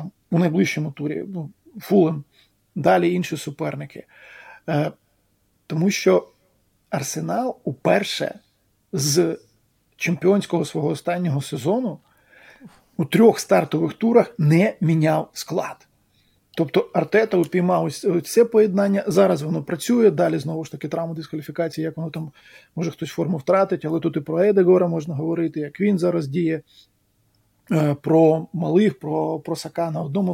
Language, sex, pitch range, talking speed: Ukrainian, male, 155-185 Hz, 125 wpm